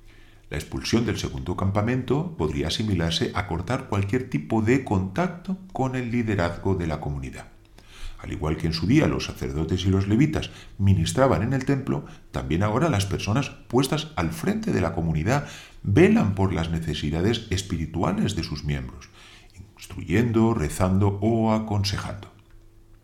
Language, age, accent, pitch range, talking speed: Spanish, 40-59, Spanish, 85-120 Hz, 145 wpm